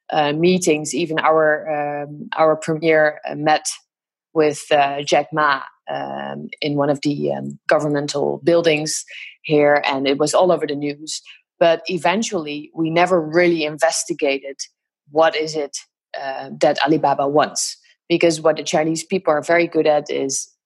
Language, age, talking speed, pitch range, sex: English, 20-39, 150 wpm, 150-170 Hz, female